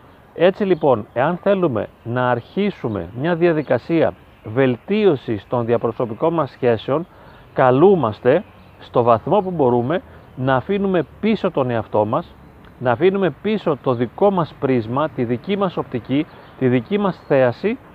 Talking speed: 130 wpm